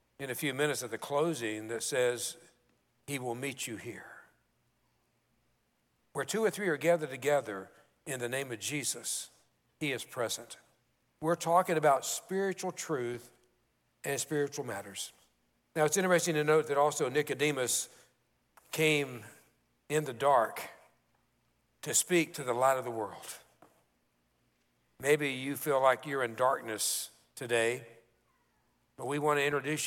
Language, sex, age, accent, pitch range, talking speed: English, male, 60-79, American, 120-170 Hz, 140 wpm